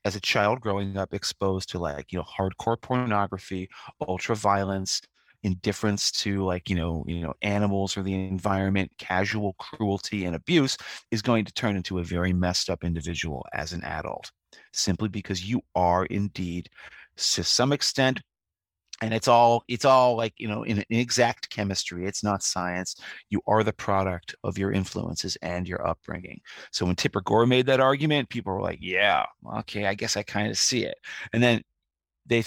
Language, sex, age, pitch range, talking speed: English, male, 30-49, 95-115 Hz, 180 wpm